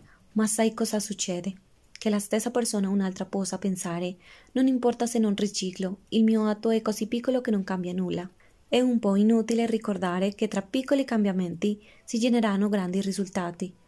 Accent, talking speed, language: Colombian, 175 wpm, Italian